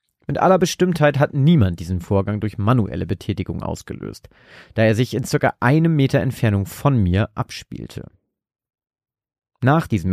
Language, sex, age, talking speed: German, male, 40-59, 140 wpm